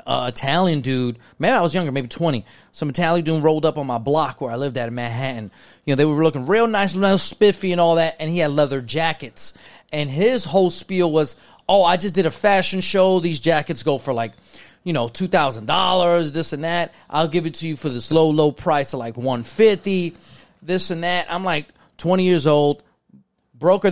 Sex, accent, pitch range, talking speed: male, American, 140-180 Hz, 215 wpm